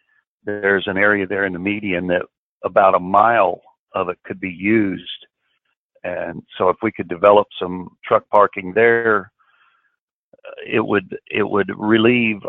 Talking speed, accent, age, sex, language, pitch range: 150 wpm, American, 50-69, male, English, 95-110 Hz